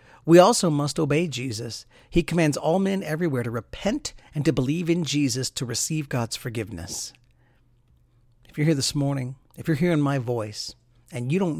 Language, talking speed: English, 175 wpm